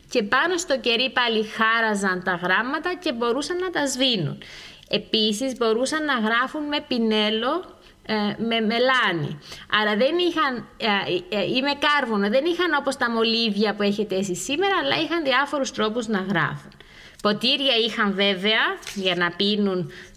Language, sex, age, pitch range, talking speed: Greek, female, 20-39, 195-265 Hz, 135 wpm